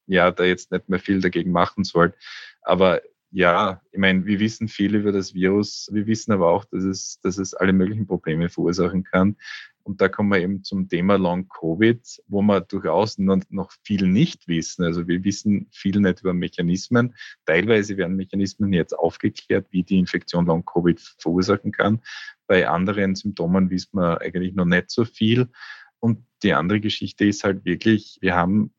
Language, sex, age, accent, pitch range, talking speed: German, male, 20-39, Austrian, 90-105 Hz, 175 wpm